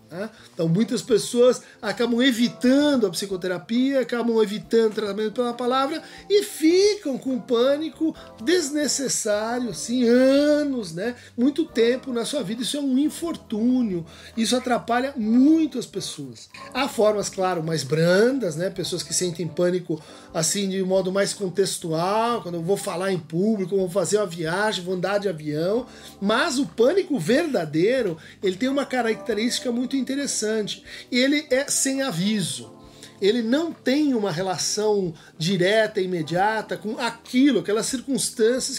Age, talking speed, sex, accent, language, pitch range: 50-69, 140 wpm, male, Brazilian, Portuguese, 195-255 Hz